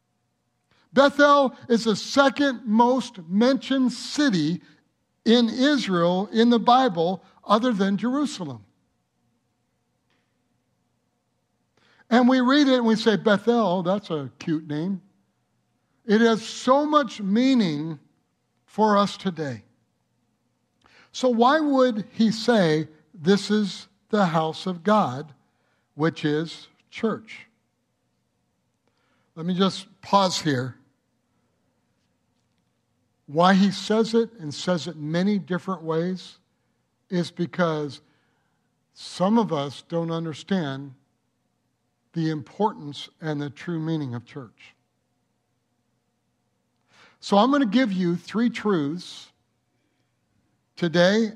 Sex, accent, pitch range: male, American, 150-215 Hz